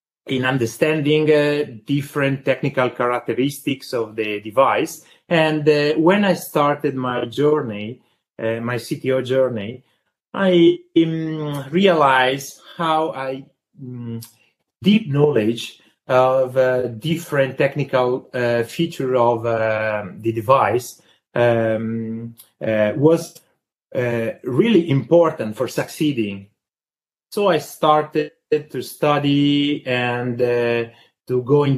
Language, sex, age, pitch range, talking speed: English, male, 30-49, 120-155 Hz, 105 wpm